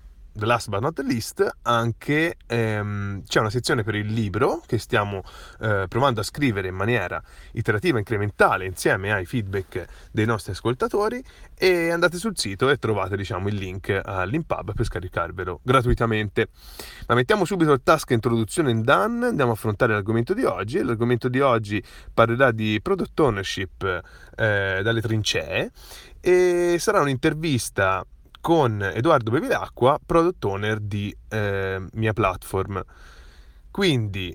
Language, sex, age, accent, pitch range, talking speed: Italian, male, 30-49, native, 100-140 Hz, 140 wpm